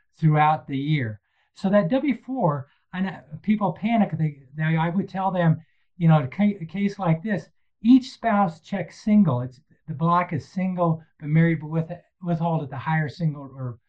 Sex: male